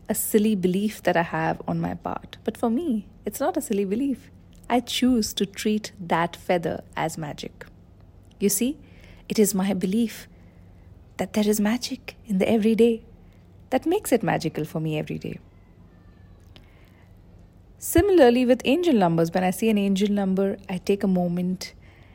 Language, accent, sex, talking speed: English, Indian, female, 165 wpm